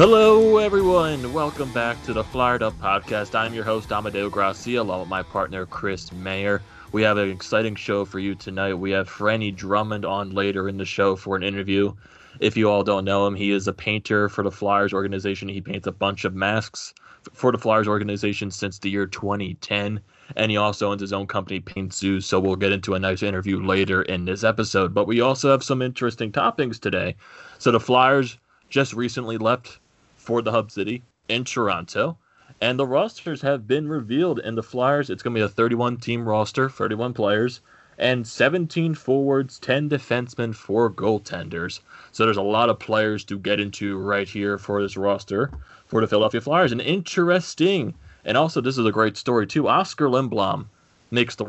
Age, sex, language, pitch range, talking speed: 20-39, male, English, 100-120 Hz, 190 wpm